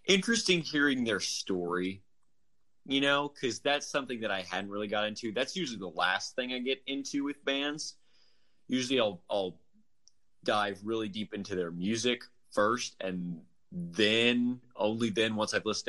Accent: American